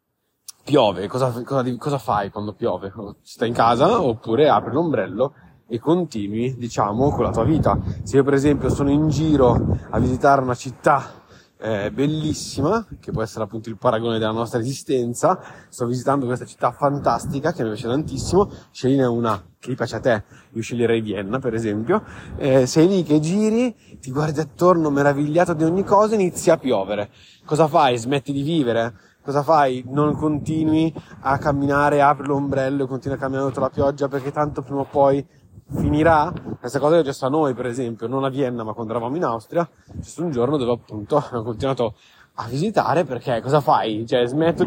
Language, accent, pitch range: Italian, native, 115-155 Hz